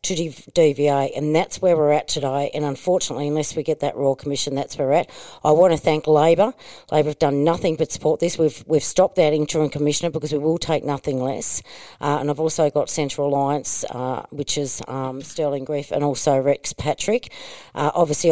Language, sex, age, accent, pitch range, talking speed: English, female, 40-59, Australian, 140-165 Hz, 210 wpm